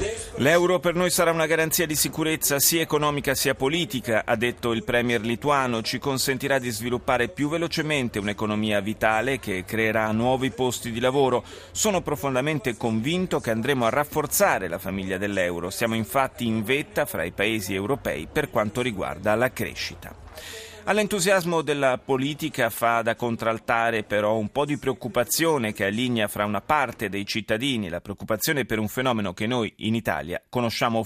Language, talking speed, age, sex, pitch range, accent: Italian, 160 wpm, 30-49, male, 110-150 Hz, native